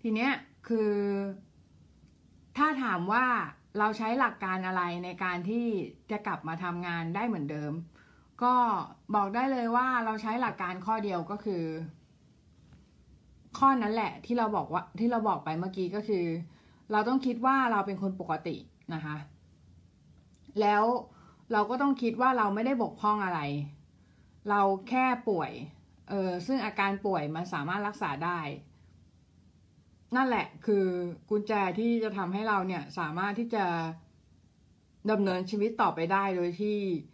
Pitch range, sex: 170-220 Hz, female